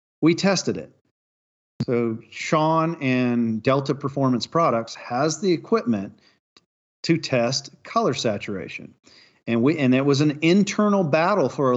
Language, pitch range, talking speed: English, 115-155 Hz, 135 wpm